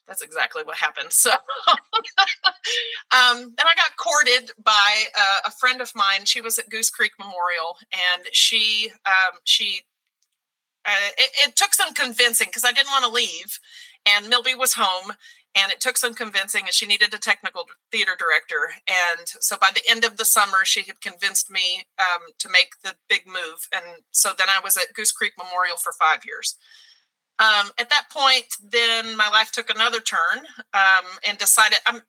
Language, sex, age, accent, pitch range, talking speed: English, female, 40-59, American, 190-250 Hz, 185 wpm